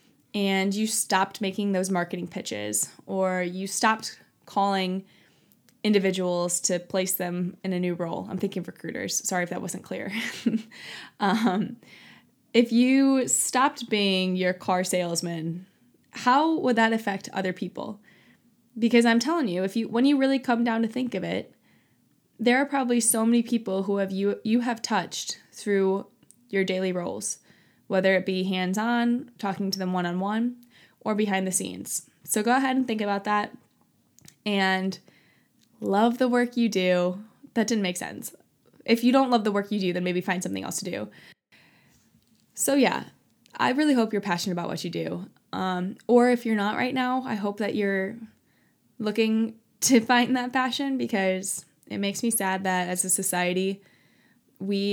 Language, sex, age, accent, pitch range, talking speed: English, female, 20-39, American, 185-235 Hz, 170 wpm